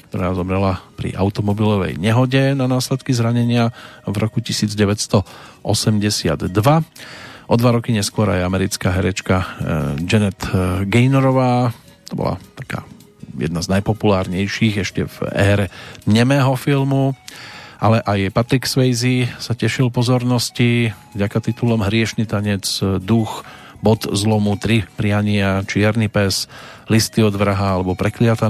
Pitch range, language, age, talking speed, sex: 95-120 Hz, Slovak, 40-59, 110 wpm, male